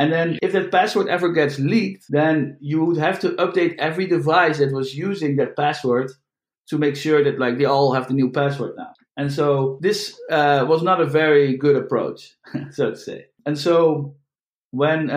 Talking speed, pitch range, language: 195 wpm, 135-165 Hz, English